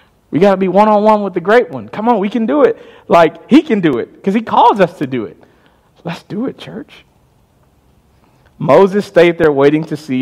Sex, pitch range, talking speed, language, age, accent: male, 115-190 Hz, 230 wpm, English, 40-59, American